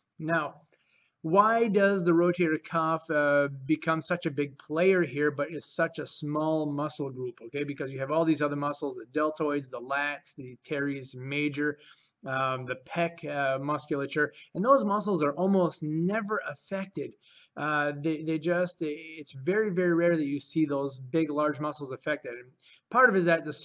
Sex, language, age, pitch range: male, English, 30-49, 145-175 Hz